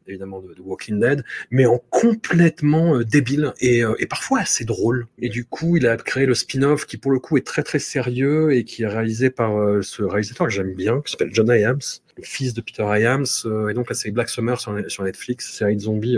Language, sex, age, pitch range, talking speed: French, male, 30-49, 110-135 Hz, 240 wpm